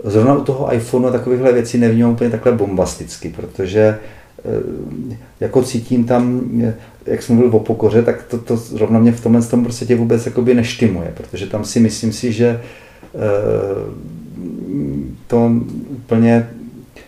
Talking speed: 135 wpm